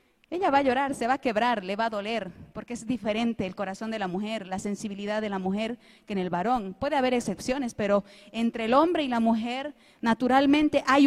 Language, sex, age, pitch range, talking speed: Spanish, female, 30-49, 195-255 Hz, 220 wpm